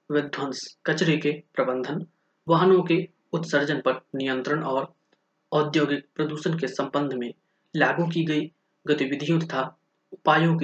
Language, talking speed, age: Hindi, 125 wpm, 20-39